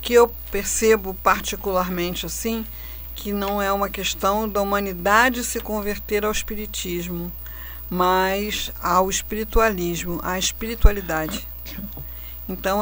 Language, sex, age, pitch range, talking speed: Portuguese, female, 50-69, 175-215 Hz, 105 wpm